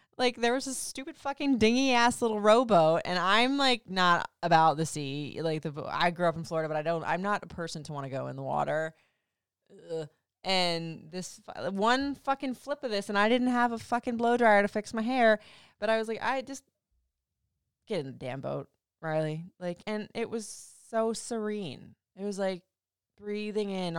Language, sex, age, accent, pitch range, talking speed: English, female, 20-39, American, 130-205 Hz, 200 wpm